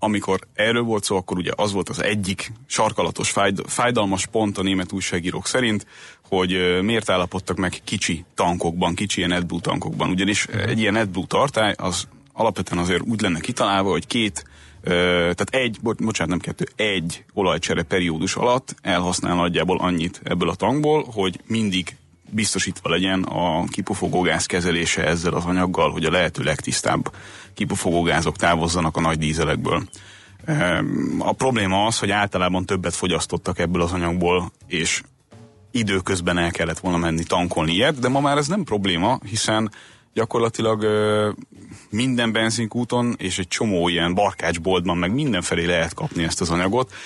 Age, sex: 30-49, male